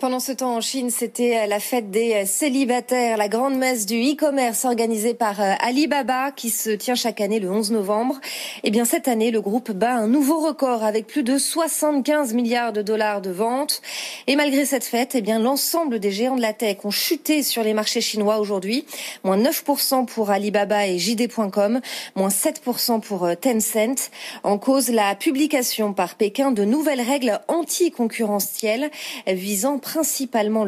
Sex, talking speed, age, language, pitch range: female, 170 wpm, 30-49, French, 210-270 Hz